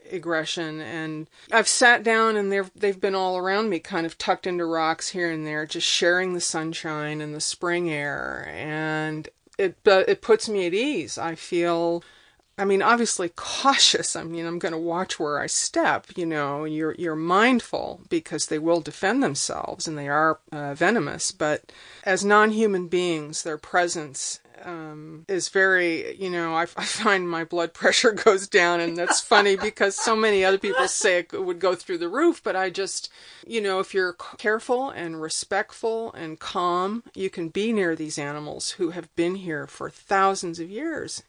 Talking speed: 180 wpm